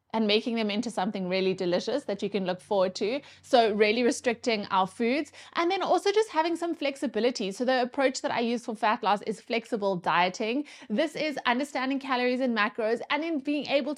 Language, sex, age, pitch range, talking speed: English, female, 20-39, 215-280 Hz, 200 wpm